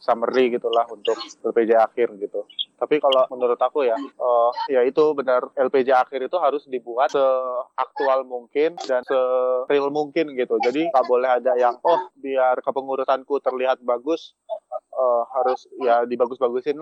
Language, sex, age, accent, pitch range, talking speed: Indonesian, male, 20-39, native, 130-165 Hz, 145 wpm